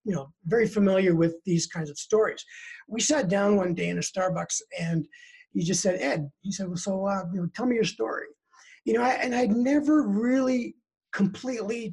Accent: American